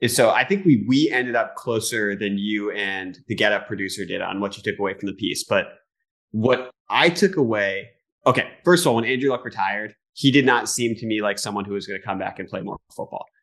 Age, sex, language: 30-49, male, English